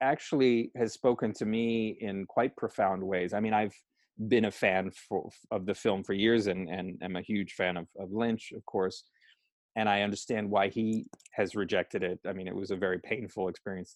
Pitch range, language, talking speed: 95-110 Hz, English, 210 wpm